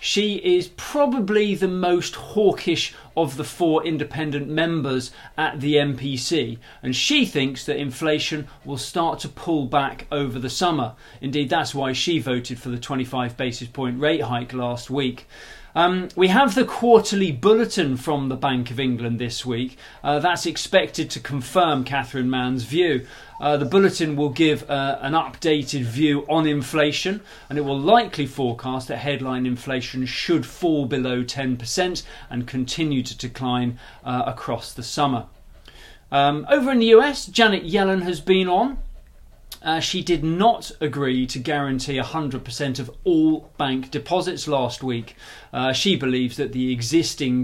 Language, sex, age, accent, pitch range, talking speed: English, male, 40-59, British, 130-165 Hz, 155 wpm